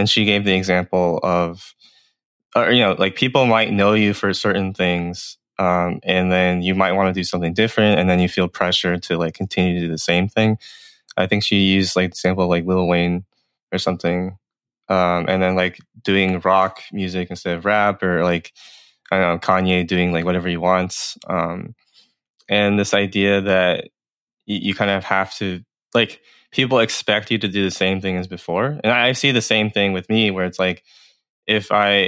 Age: 20-39